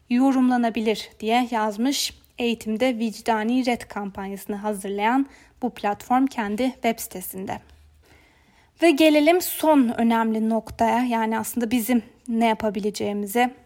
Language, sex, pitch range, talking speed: German, female, 220-270 Hz, 100 wpm